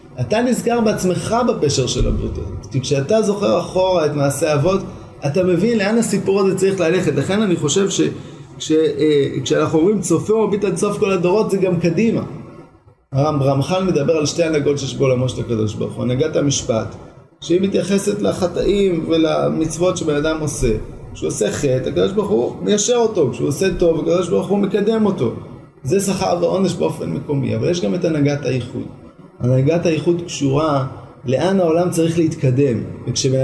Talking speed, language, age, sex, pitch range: 160 wpm, Hebrew, 20-39, male, 140-185 Hz